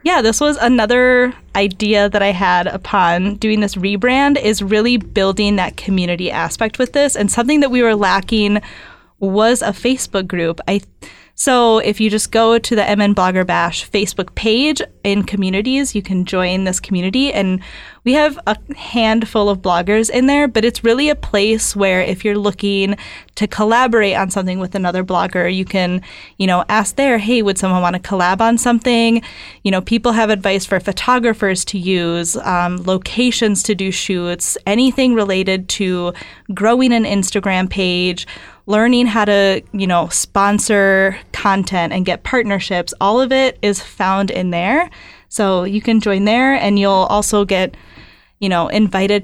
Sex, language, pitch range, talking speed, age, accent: female, English, 190-230 Hz, 170 wpm, 10-29, American